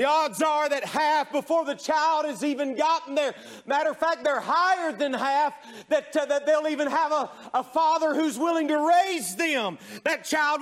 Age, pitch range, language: 40-59, 285-325 Hz, English